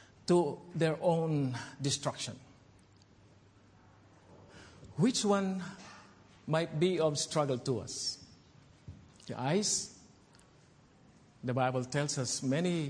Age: 50-69